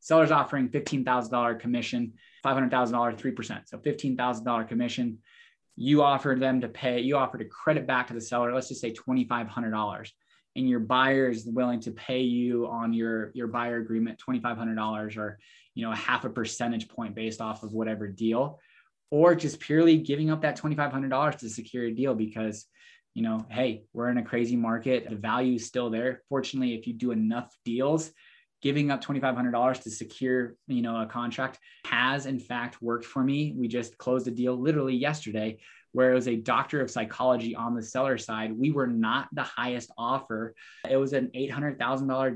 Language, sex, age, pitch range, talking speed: English, male, 20-39, 115-135 Hz, 205 wpm